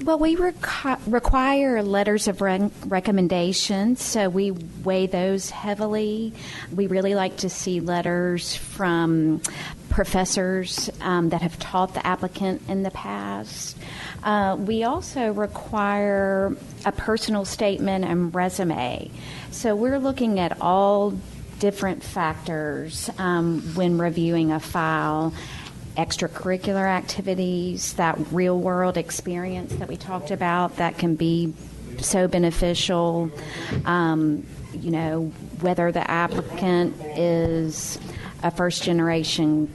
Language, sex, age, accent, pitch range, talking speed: English, female, 40-59, American, 165-195 Hz, 110 wpm